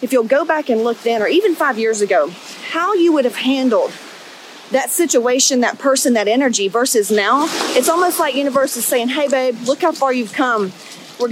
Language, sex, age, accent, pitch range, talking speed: English, female, 30-49, American, 240-285 Hz, 205 wpm